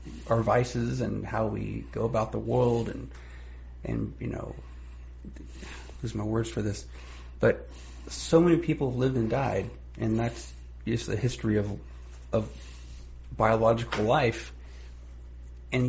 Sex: male